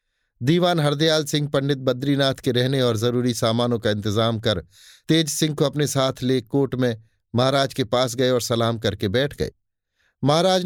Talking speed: 175 wpm